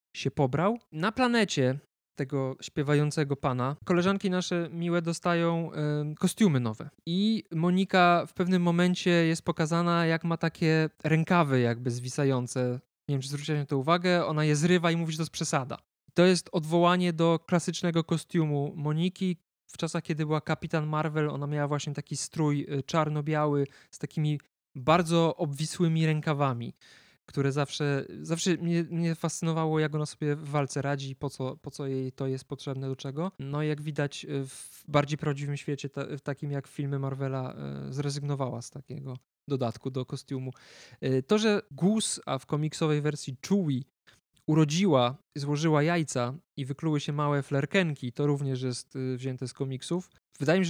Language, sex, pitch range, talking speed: Polish, male, 135-165 Hz, 155 wpm